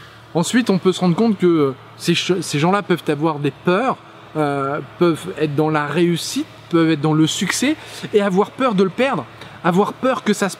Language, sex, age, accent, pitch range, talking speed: French, male, 20-39, French, 155-205 Hz, 200 wpm